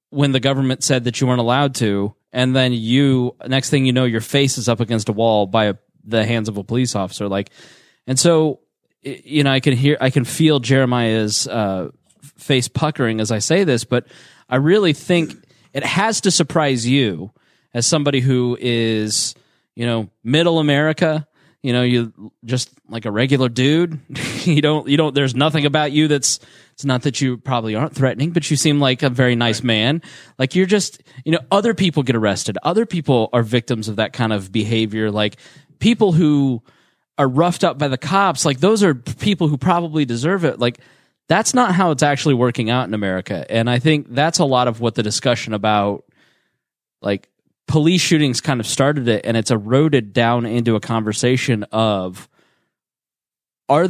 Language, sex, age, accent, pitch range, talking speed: English, male, 20-39, American, 115-150 Hz, 190 wpm